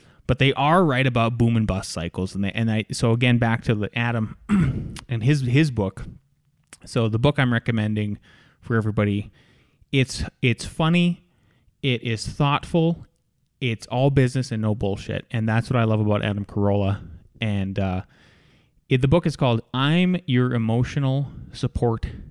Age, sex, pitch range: 20-39, male, 110-140 Hz